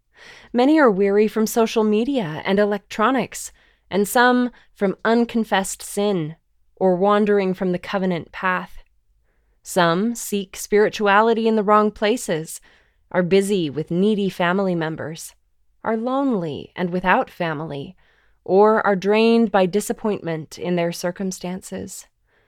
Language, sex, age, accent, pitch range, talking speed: English, female, 20-39, American, 180-220 Hz, 120 wpm